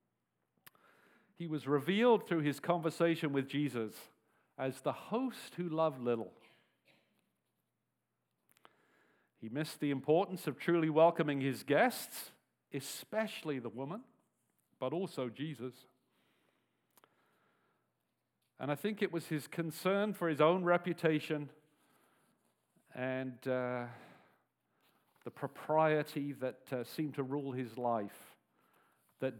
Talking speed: 105 wpm